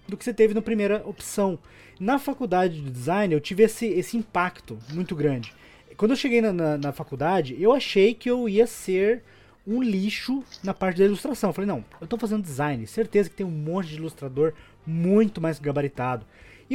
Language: Portuguese